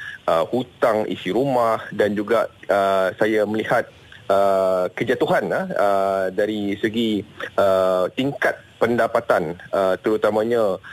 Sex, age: male, 30-49